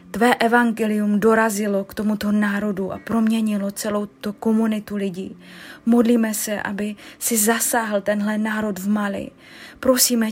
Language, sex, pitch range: Slovak, female, 210-230 Hz